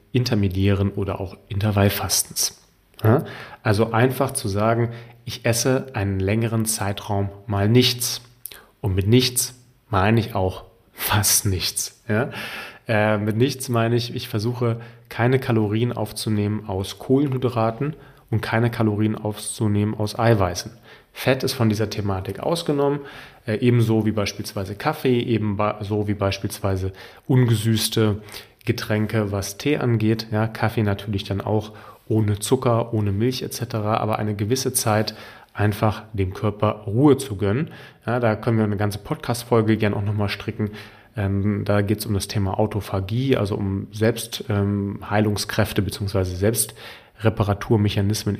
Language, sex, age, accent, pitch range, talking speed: German, male, 30-49, German, 100-120 Hz, 125 wpm